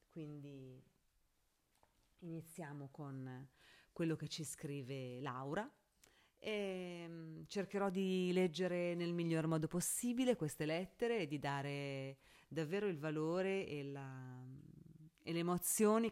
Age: 30-49